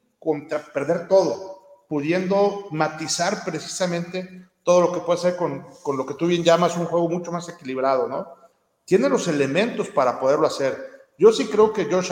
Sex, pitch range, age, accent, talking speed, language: male, 150-195 Hz, 50-69, Mexican, 175 wpm, Spanish